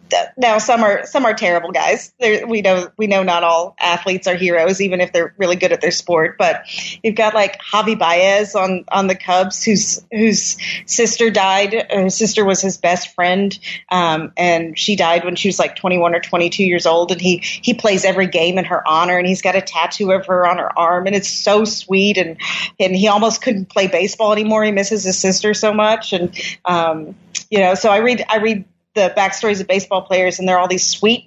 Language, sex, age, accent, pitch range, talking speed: English, female, 30-49, American, 180-205 Hz, 220 wpm